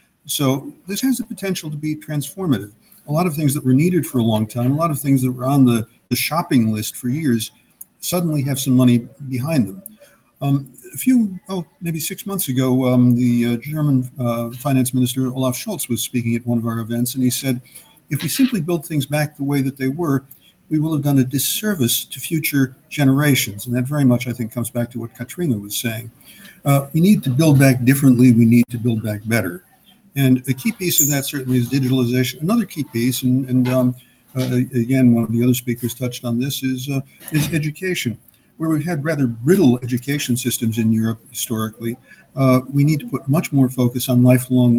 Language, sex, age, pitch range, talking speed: English, male, 50-69, 120-145 Hz, 215 wpm